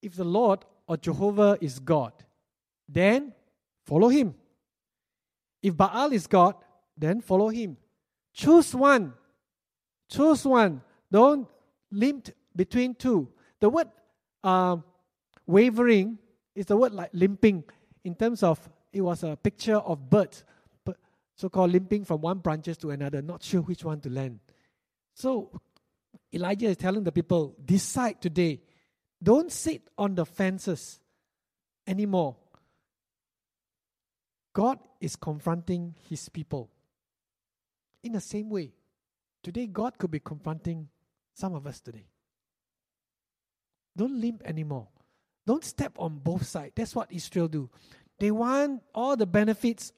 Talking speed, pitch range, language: 125 wpm, 160-210 Hz, English